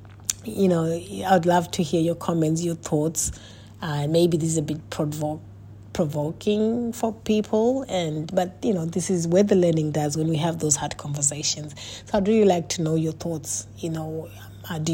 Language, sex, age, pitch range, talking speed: English, female, 30-49, 150-175 Hz, 190 wpm